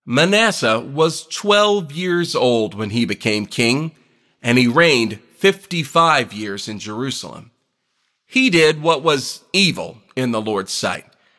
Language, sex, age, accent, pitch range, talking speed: English, male, 40-59, American, 120-160 Hz, 130 wpm